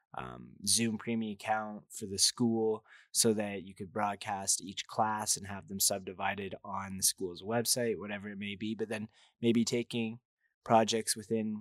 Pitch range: 95-115 Hz